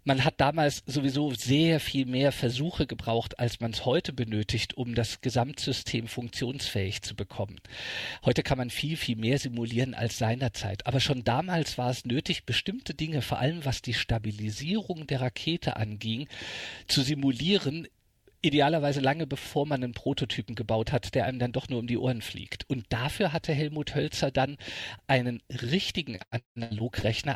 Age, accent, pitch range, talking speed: 50-69, German, 115-150 Hz, 160 wpm